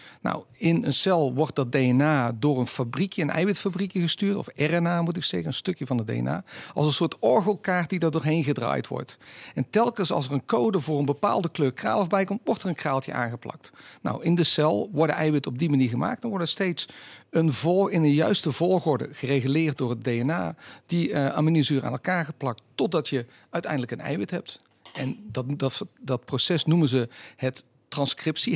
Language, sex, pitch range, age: Dutch, male, 130-175 Hz, 50-69